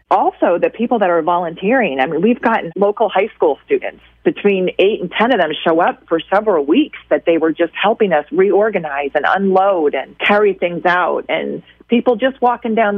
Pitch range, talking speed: 165-235 Hz, 195 wpm